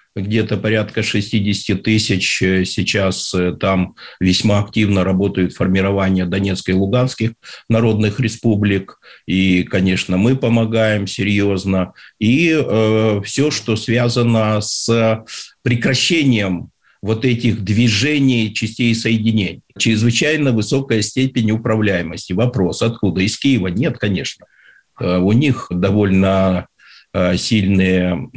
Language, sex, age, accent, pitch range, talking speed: Russian, male, 50-69, native, 95-115 Hz, 100 wpm